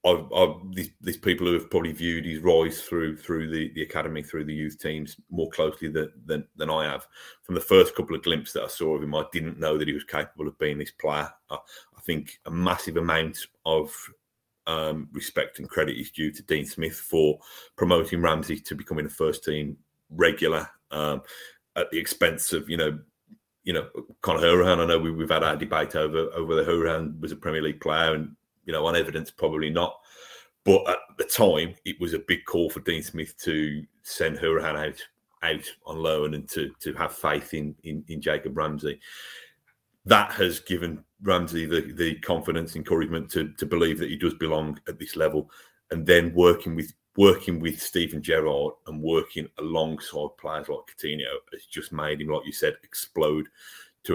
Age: 30-49